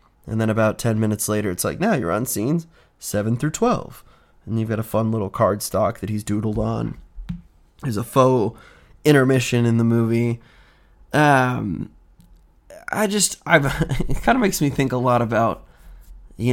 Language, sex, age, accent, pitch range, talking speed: English, male, 20-39, American, 110-135 Hz, 175 wpm